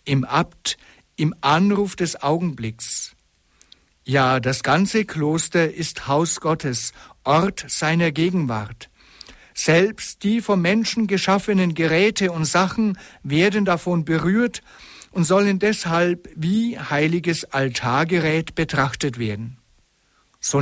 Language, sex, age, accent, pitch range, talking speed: German, male, 60-79, German, 140-190 Hz, 105 wpm